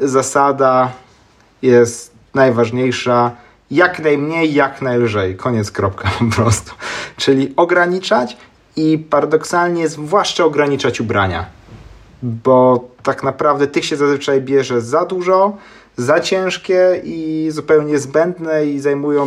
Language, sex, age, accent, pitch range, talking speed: Polish, male, 30-49, native, 115-150 Hz, 105 wpm